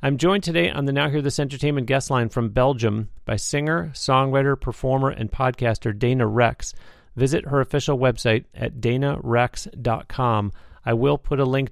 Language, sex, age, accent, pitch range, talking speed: English, male, 40-59, American, 115-135 Hz, 165 wpm